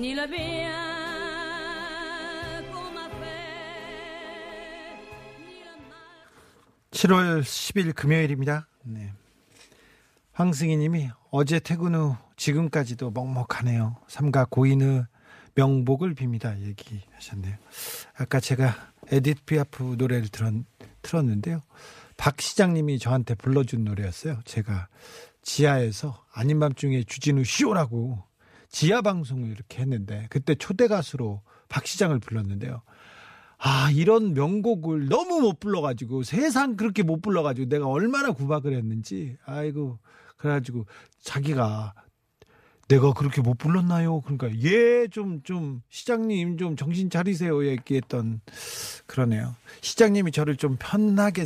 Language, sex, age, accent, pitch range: Korean, male, 40-59, native, 120-170 Hz